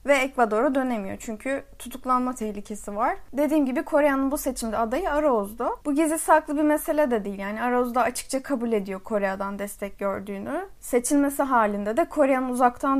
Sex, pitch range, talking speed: female, 220-295 Hz, 155 wpm